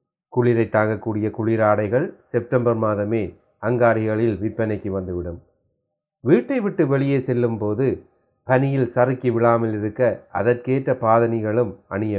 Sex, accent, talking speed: male, native, 95 wpm